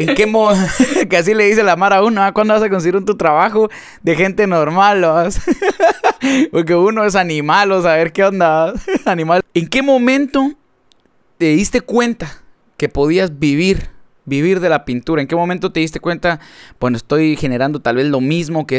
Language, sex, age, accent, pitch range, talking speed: Spanish, male, 20-39, Mexican, 145-205 Hz, 180 wpm